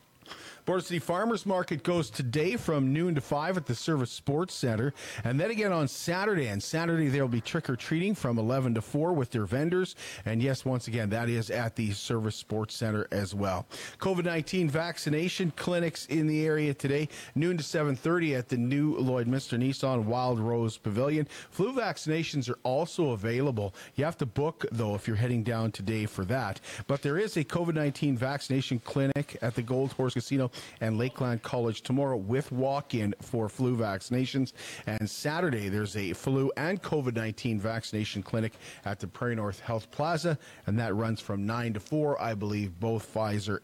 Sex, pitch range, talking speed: male, 115-150 Hz, 175 wpm